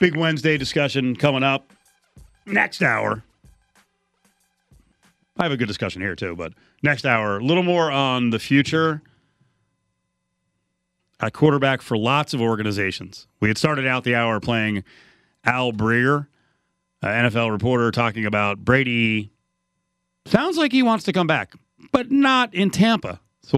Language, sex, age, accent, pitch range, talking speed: English, male, 40-59, American, 110-165 Hz, 145 wpm